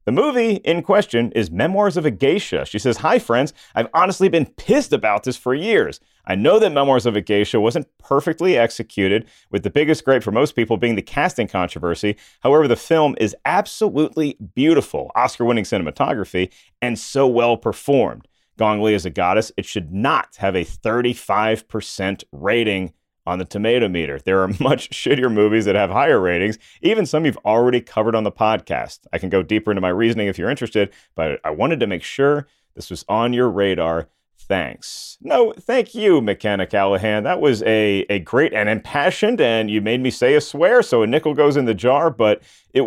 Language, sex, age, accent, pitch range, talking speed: English, male, 40-59, American, 105-145 Hz, 190 wpm